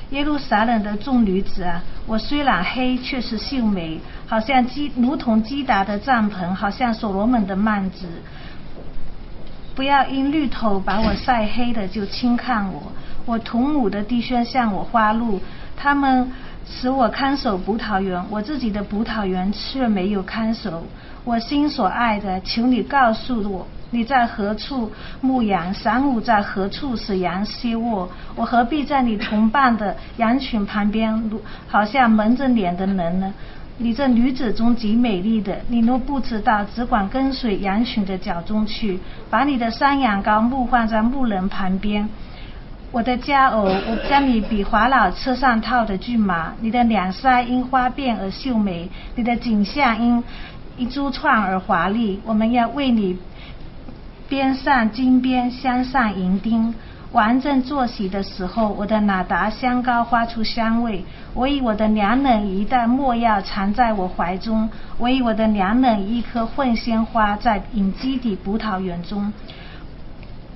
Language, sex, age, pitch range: English, female, 50-69, 205-250 Hz